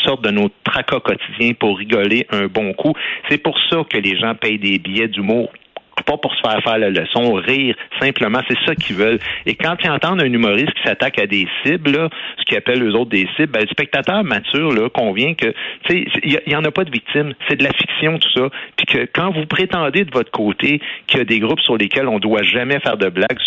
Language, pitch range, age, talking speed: French, 105-150 Hz, 50-69, 240 wpm